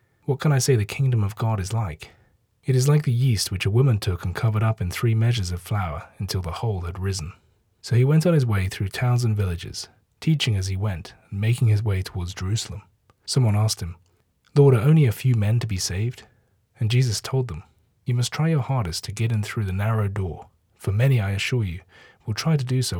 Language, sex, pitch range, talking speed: English, male, 95-125 Hz, 235 wpm